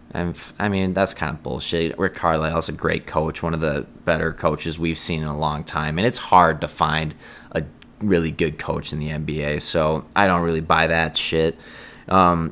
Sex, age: male, 20-39